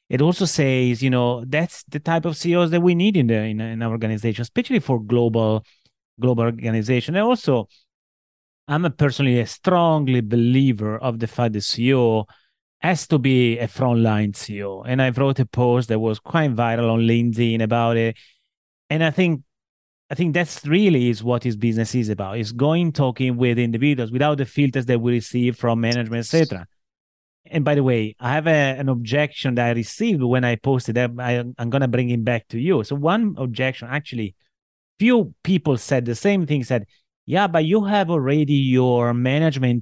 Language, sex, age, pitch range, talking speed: English, male, 30-49, 120-155 Hz, 185 wpm